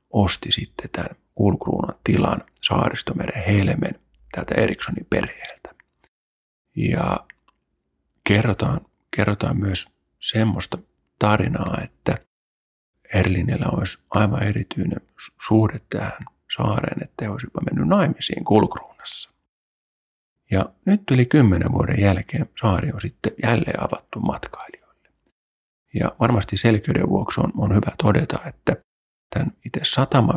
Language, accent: Finnish, native